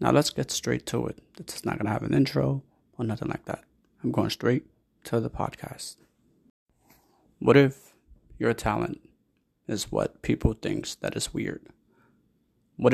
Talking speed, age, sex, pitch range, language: 160 wpm, 20-39, male, 105-125 Hz, English